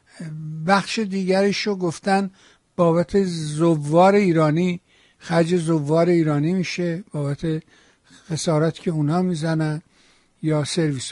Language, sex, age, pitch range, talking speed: Persian, male, 60-79, 160-200 Hz, 90 wpm